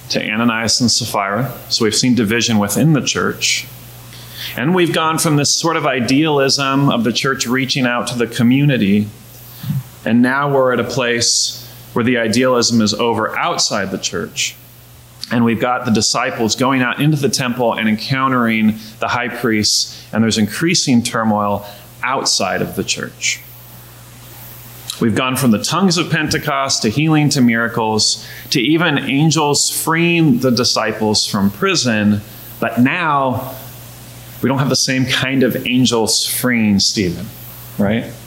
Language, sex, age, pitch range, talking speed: English, male, 30-49, 110-135 Hz, 150 wpm